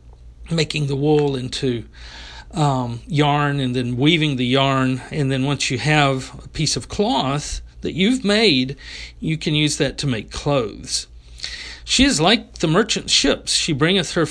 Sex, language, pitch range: male, English, 125-165 Hz